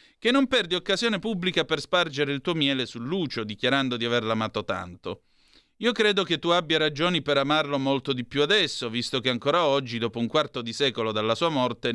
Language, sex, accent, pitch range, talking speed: Italian, male, native, 120-155 Hz, 205 wpm